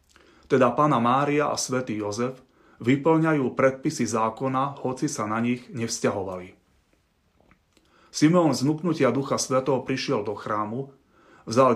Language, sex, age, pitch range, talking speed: Slovak, male, 30-49, 120-140 Hz, 110 wpm